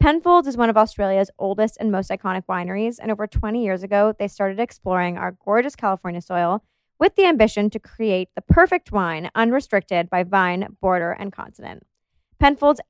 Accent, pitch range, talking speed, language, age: American, 190-230 Hz, 170 wpm, English, 20-39